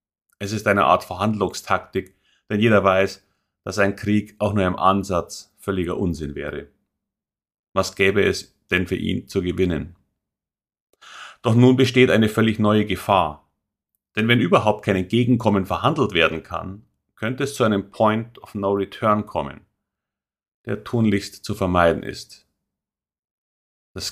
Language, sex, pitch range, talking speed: German, male, 90-115 Hz, 140 wpm